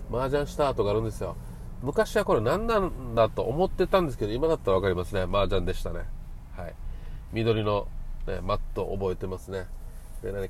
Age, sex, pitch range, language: 40-59, male, 95-120 Hz, Japanese